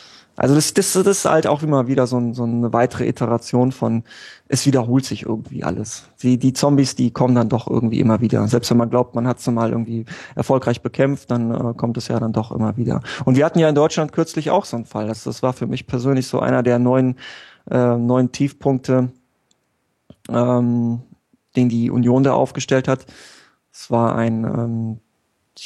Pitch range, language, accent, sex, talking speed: 115-130 Hz, German, German, male, 205 wpm